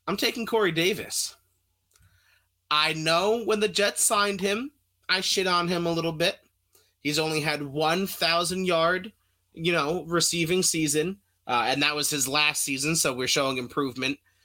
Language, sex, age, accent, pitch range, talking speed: English, male, 30-49, American, 130-165 Hz, 155 wpm